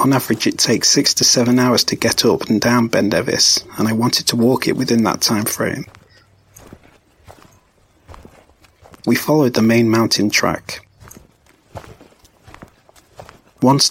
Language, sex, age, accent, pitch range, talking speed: English, male, 30-49, British, 105-120 Hz, 135 wpm